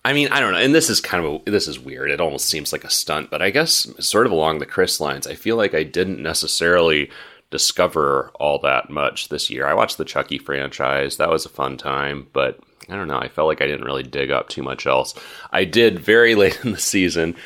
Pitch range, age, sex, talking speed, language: 80-95 Hz, 30-49, male, 250 wpm, English